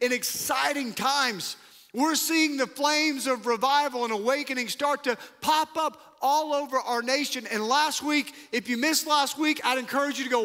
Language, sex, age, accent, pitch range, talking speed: English, male, 40-59, American, 220-270 Hz, 185 wpm